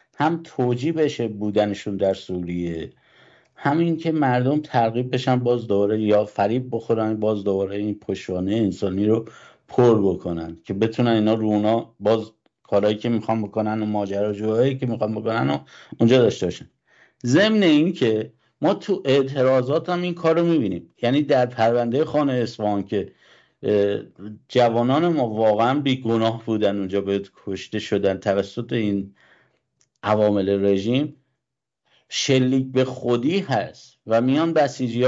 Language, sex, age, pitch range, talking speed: English, male, 50-69, 105-135 Hz, 135 wpm